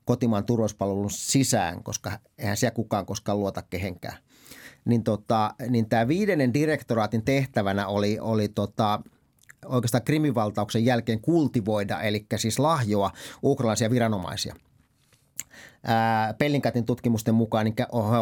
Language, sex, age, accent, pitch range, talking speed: Finnish, male, 30-49, native, 105-130 Hz, 110 wpm